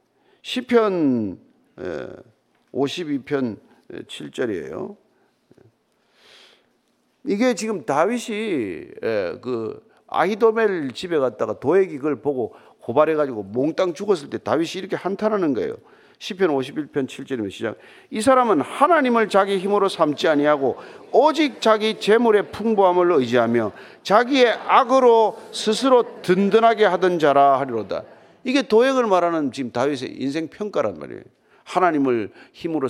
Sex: male